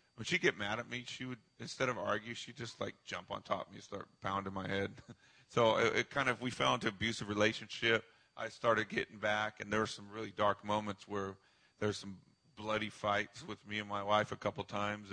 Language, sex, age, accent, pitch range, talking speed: English, male, 40-59, American, 100-120 Hz, 240 wpm